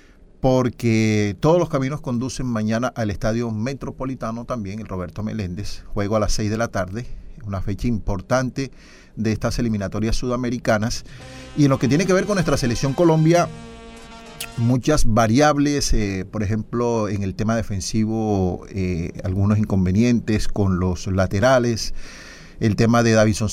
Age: 40-59